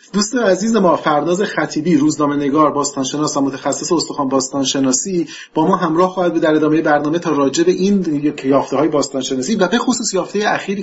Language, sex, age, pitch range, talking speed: Persian, male, 30-49, 135-190 Hz, 185 wpm